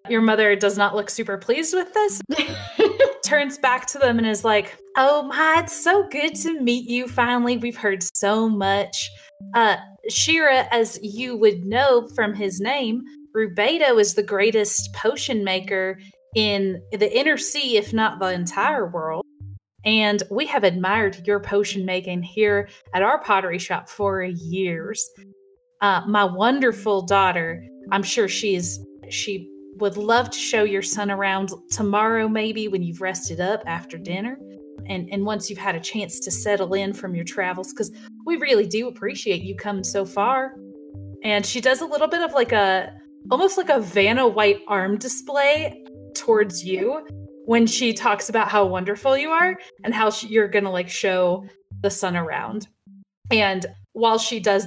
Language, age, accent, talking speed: English, 30-49, American, 170 wpm